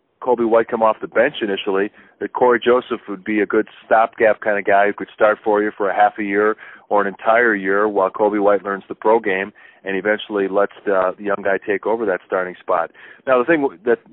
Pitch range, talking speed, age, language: 100-120 Hz, 230 wpm, 40-59, English